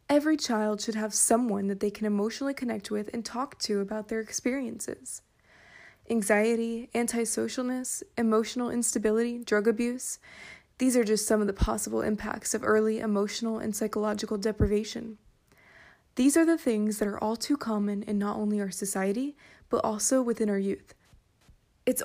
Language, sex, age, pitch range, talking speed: English, female, 20-39, 215-255 Hz, 155 wpm